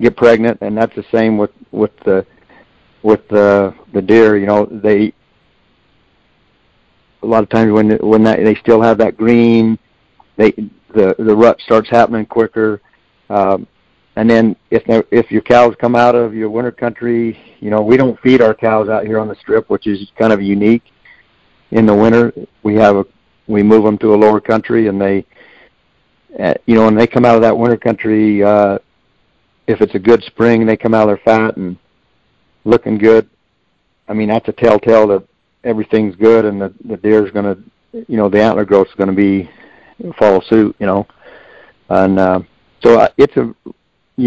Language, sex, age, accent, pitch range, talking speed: English, male, 60-79, American, 105-115 Hz, 185 wpm